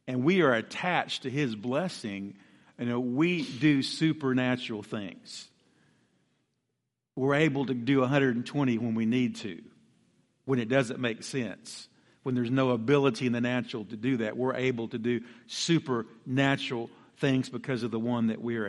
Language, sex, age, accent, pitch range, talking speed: English, male, 50-69, American, 115-140 Hz, 160 wpm